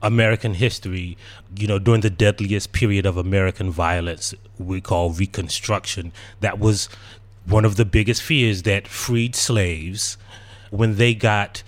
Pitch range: 95-110 Hz